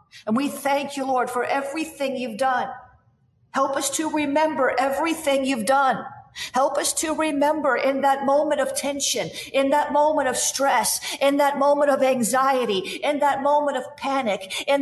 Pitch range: 265-300 Hz